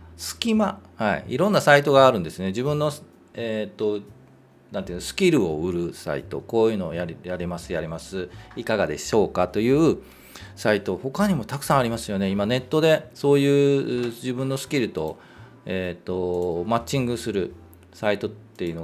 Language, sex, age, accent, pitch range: Japanese, male, 40-59, native, 85-130 Hz